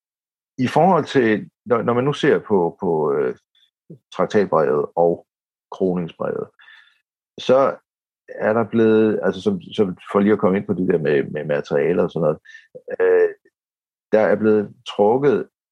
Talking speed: 150 wpm